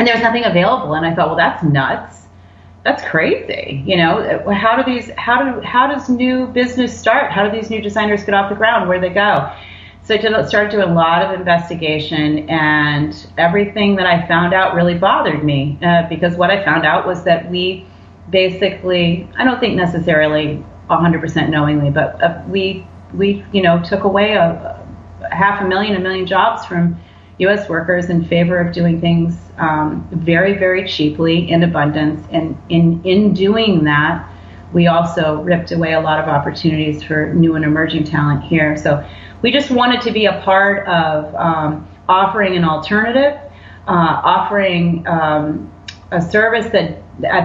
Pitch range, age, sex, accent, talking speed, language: 155-195 Hz, 30-49, female, American, 175 wpm, English